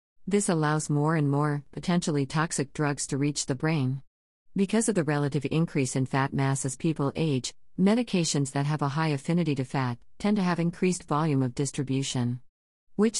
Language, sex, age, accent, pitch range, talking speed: English, female, 50-69, American, 135-165 Hz, 175 wpm